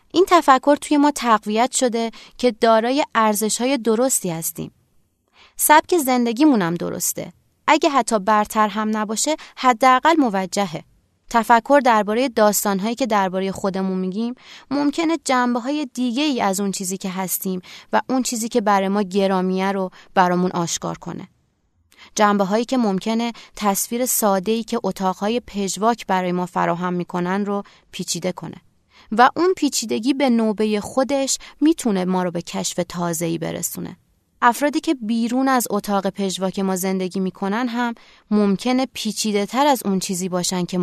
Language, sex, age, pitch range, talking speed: Persian, female, 20-39, 190-250 Hz, 140 wpm